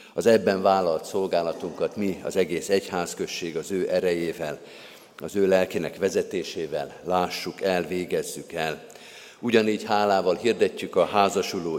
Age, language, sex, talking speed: 50-69, Hungarian, male, 120 wpm